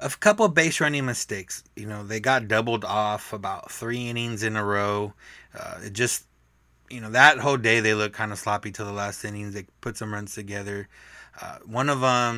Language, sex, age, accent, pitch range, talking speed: English, male, 20-39, American, 100-115 Hz, 215 wpm